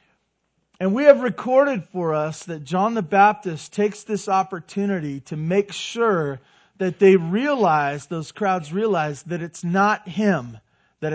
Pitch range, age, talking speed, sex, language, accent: 170-215 Hz, 40-59, 145 wpm, male, English, American